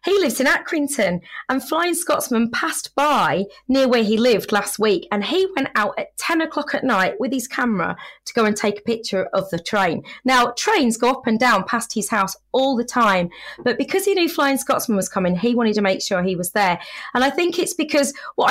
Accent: British